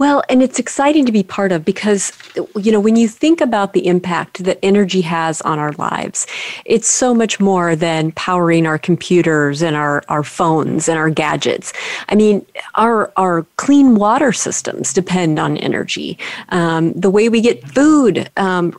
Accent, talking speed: American, 175 wpm